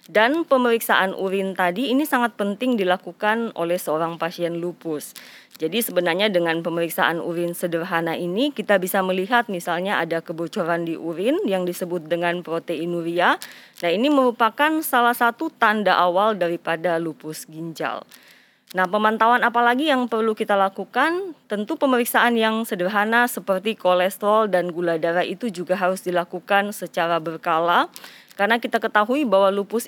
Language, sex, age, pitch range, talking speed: Indonesian, female, 20-39, 170-225 Hz, 135 wpm